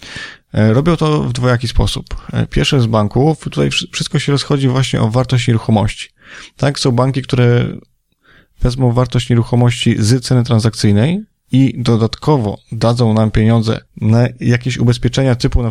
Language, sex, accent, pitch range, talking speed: Polish, male, native, 110-125 Hz, 140 wpm